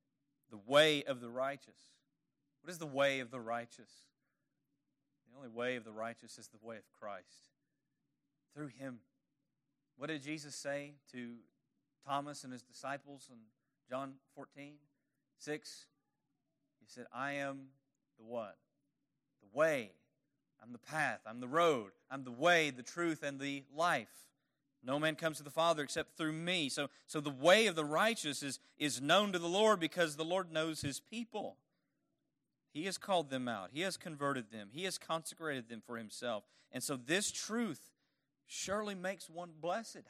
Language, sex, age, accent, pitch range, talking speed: English, male, 30-49, American, 125-150 Hz, 165 wpm